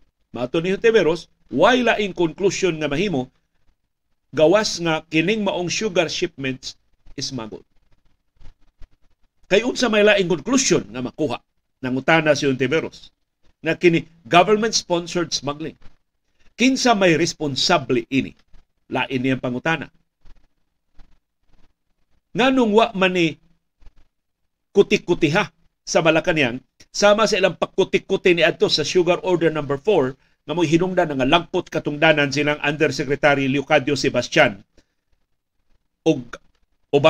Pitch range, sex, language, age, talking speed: 145-185 Hz, male, Filipino, 50-69, 115 wpm